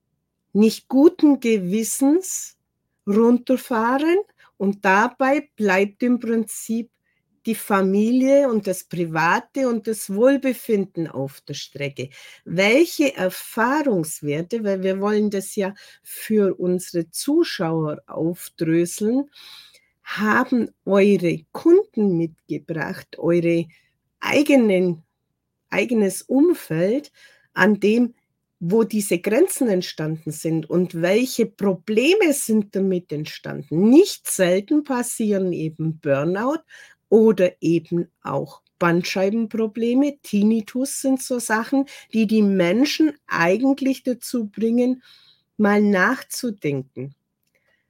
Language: German